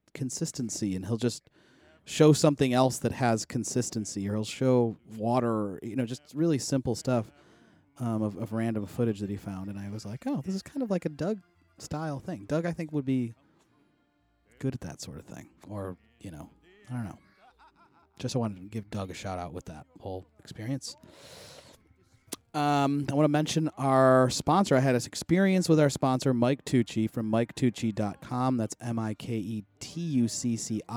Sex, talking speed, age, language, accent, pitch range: male, 175 wpm, 30-49, English, American, 115-145 Hz